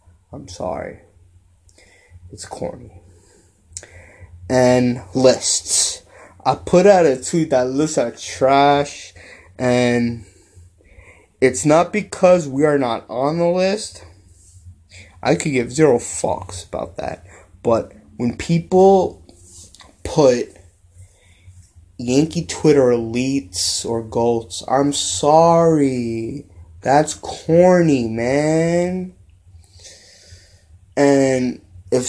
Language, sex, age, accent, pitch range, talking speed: English, male, 20-39, American, 90-140 Hz, 90 wpm